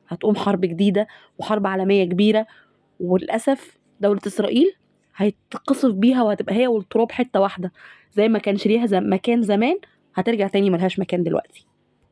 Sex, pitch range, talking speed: female, 205-260 Hz, 140 wpm